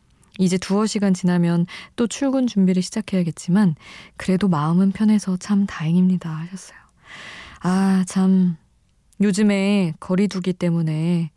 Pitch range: 170-215 Hz